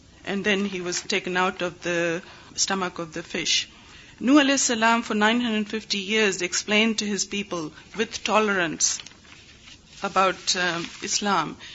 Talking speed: 140 wpm